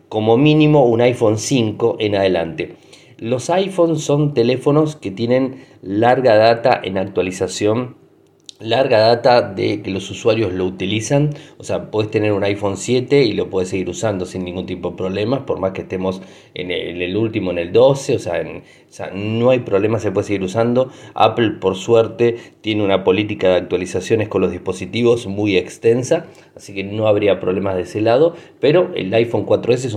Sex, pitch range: male, 95-125 Hz